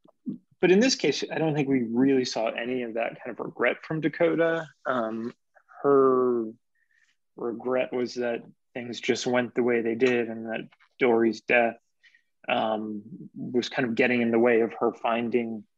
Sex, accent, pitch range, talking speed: male, American, 115-130 Hz, 170 wpm